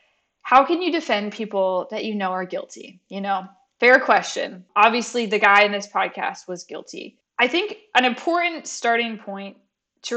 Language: English